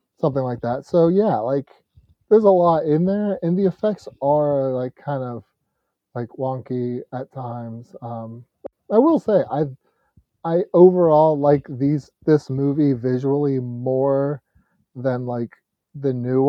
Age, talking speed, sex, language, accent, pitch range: 30-49, 140 wpm, male, English, American, 125-145 Hz